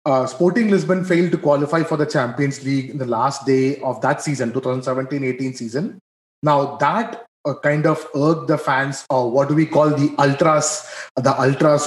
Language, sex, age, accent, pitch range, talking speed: English, male, 30-49, Indian, 135-160 Hz, 180 wpm